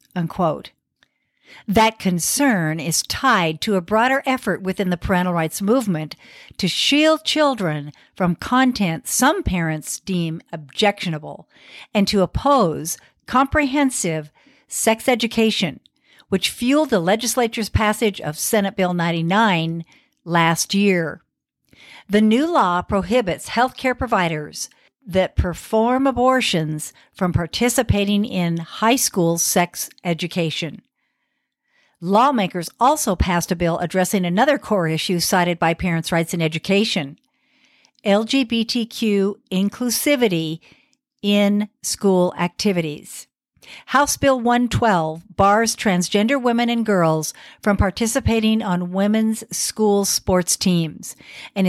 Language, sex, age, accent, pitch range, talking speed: English, female, 60-79, American, 170-240 Hz, 110 wpm